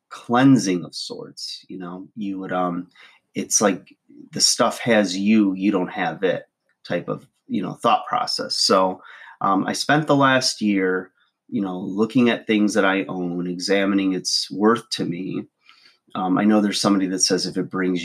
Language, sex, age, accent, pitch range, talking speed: English, male, 30-49, American, 90-105 Hz, 180 wpm